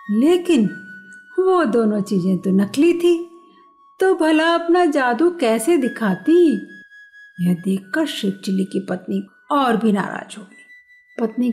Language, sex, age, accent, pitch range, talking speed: Hindi, female, 50-69, native, 220-320 Hz, 130 wpm